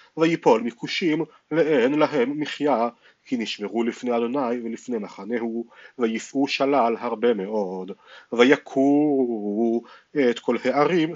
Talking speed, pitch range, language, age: 100 wpm, 115-150 Hz, Hebrew, 40-59